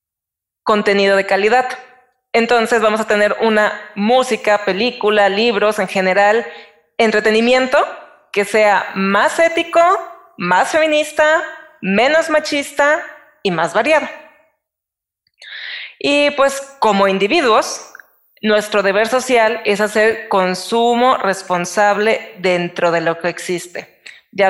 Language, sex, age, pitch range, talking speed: Spanish, female, 20-39, 195-255 Hz, 105 wpm